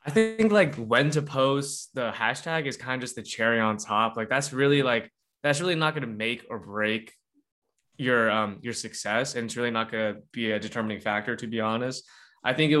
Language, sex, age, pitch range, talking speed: English, male, 20-39, 110-125 Hz, 225 wpm